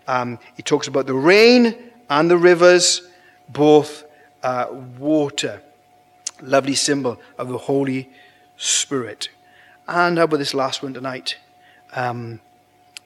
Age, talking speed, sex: 30-49, 115 wpm, male